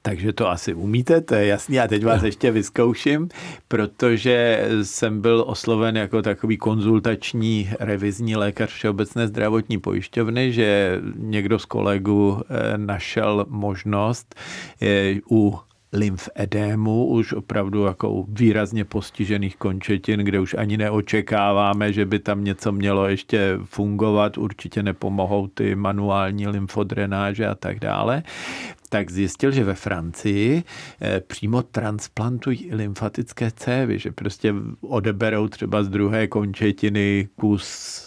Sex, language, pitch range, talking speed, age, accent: male, Czech, 100-115 Hz, 120 wpm, 50-69, native